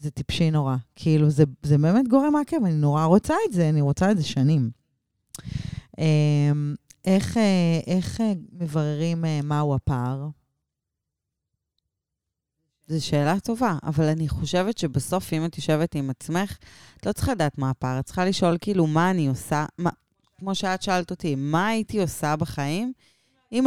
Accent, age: native, 20-39